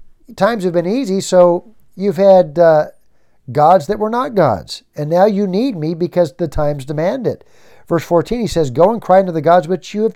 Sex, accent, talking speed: male, American, 215 wpm